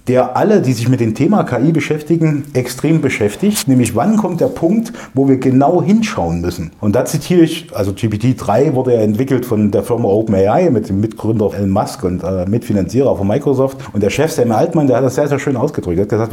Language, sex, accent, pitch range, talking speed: German, male, German, 105-150 Hz, 215 wpm